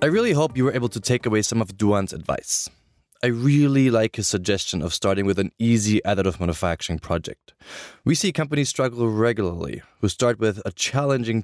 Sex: male